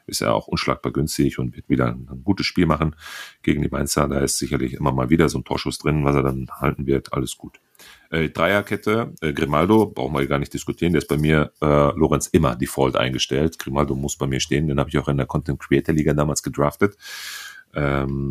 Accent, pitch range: German, 70-85 Hz